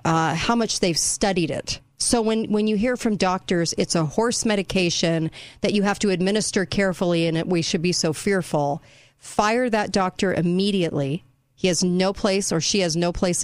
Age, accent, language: 40-59, American, English